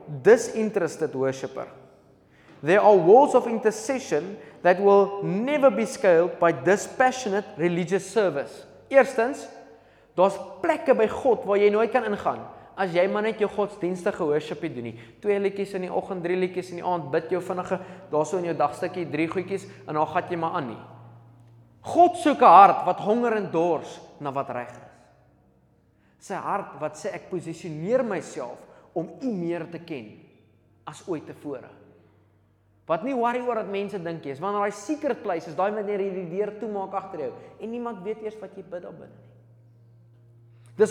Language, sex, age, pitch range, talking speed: English, male, 20-39, 150-205 Hz, 185 wpm